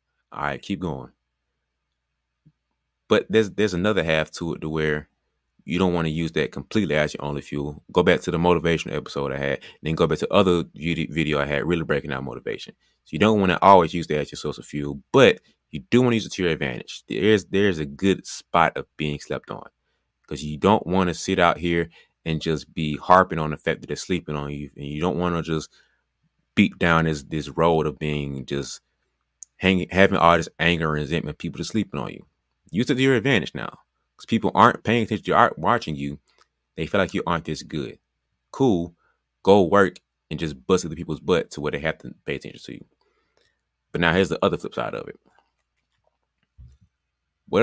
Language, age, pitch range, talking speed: English, 20-39, 75-90 Hz, 220 wpm